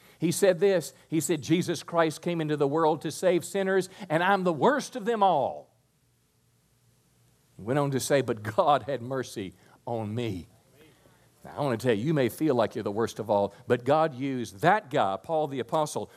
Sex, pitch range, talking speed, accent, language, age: male, 130-185 Hz, 205 wpm, American, English, 50-69